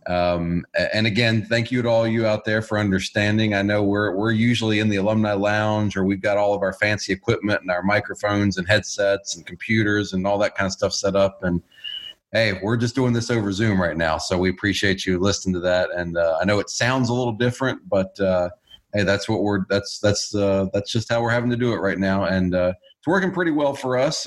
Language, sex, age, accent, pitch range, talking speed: English, male, 40-59, American, 95-115 Hz, 240 wpm